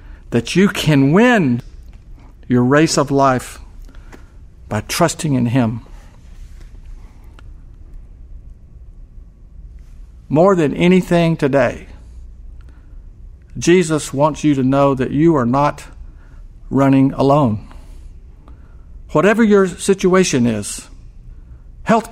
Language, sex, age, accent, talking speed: English, male, 50-69, American, 85 wpm